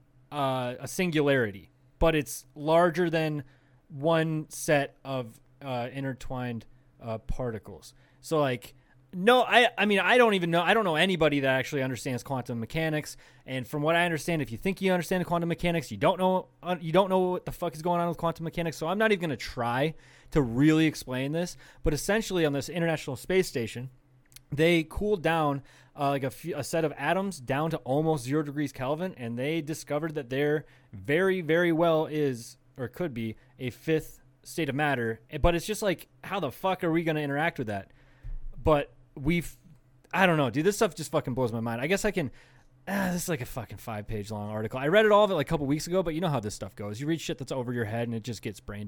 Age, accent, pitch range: 20-39, American, 130-165 Hz